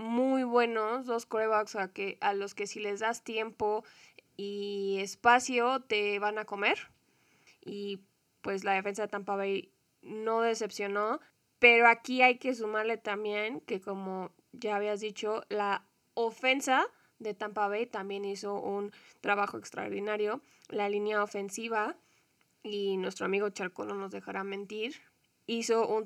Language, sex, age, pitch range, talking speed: Spanish, female, 20-39, 205-225 Hz, 145 wpm